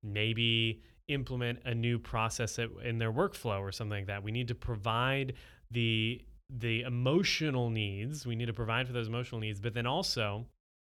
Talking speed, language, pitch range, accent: 170 wpm, English, 110-125 Hz, American